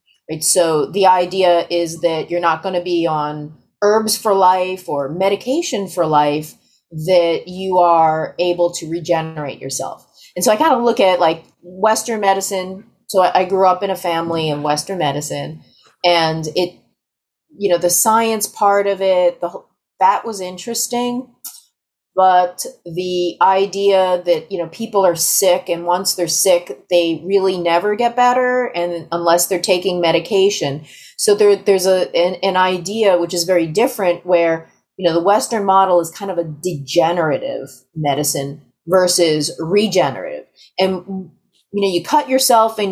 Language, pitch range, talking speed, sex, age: English, 165-195 Hz, 160 wpm, female, 30-49